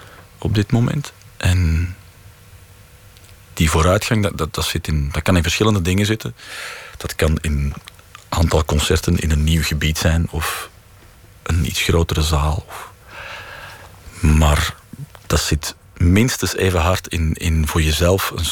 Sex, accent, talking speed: male, Dutch, 140 wpm